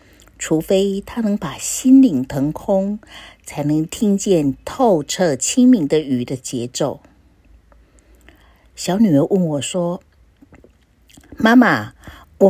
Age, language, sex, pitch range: 50-69, Chinese, female, 155-240 Hz